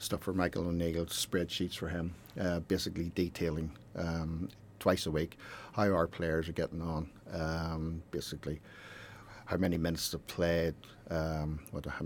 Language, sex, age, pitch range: English, male, 50-69, 80-100 Hz